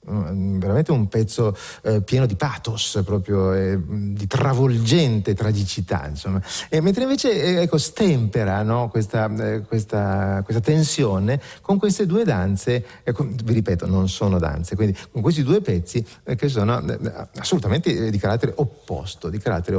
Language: Italian